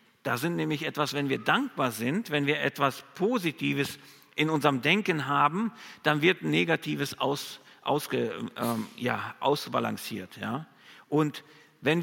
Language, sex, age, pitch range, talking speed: German, male, 50-69, 135-180 Hz, 135 wpm